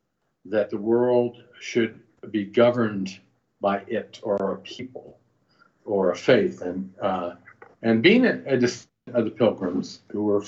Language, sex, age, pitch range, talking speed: English, male, 50-69, 105-130 Hz, 145 wpm